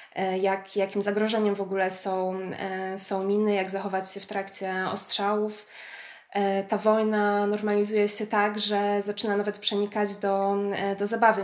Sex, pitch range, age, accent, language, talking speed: female, 195-210 Hz, 20-39, native, Polish, 130 wpm